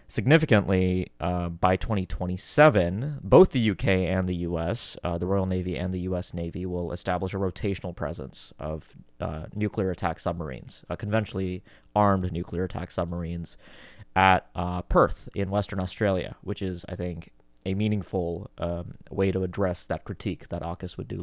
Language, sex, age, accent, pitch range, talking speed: English, male, 30-49, American, 90-105 Hz, 160 wpm